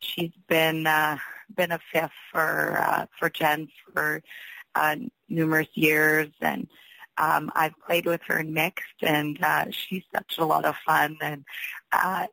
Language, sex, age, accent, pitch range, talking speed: English, female, 30-49, American, 155-175 Hz, 160 wpm